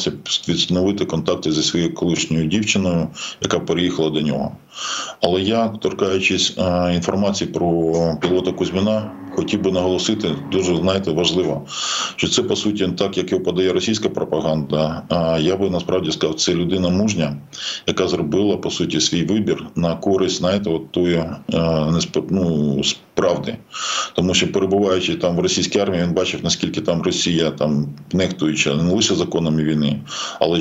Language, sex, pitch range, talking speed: Ukrainian, male, 80-95 Hz, 140 wpm